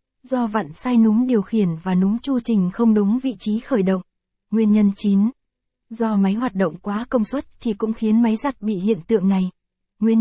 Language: Vietnamese